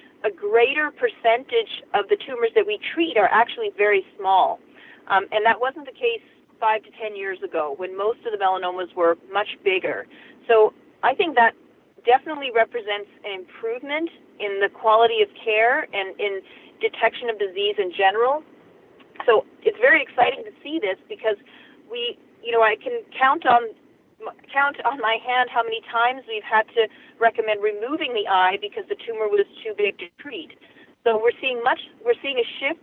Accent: American